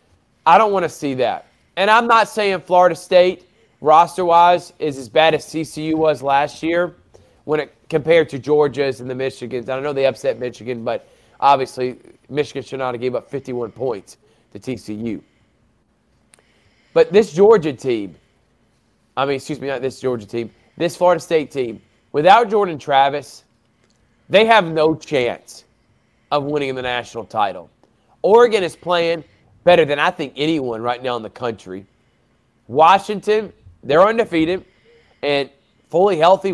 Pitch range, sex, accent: 125-175 Hz, male, American